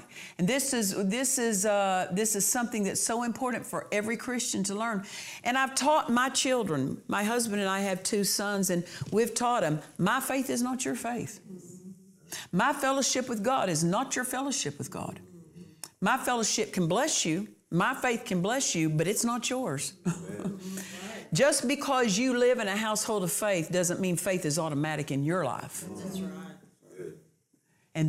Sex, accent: female, American